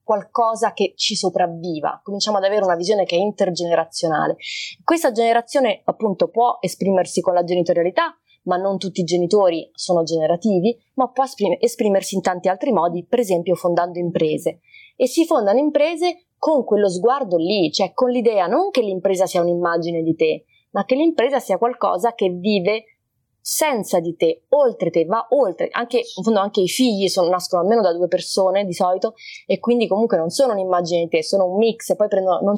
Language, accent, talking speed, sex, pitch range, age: Italian, native, 185 wpm, female, 180-235 Hz, 20-39